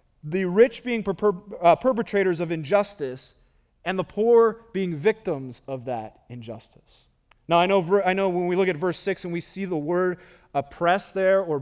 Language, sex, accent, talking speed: English, male, American, 165 wpm